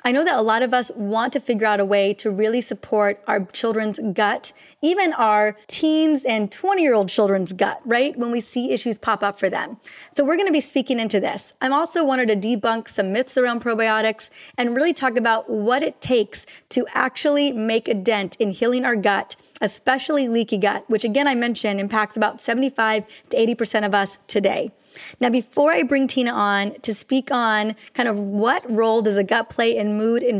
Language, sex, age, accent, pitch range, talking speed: English, female, 30-49, American, 215-260 Hz, 205 wpm